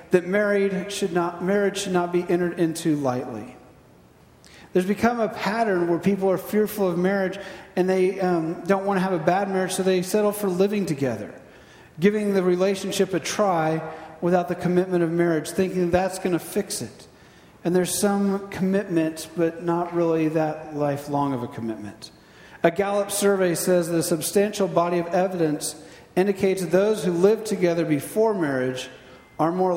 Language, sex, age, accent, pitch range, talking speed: English, male, 50-69, American, 155-190 Hz, 170 wpm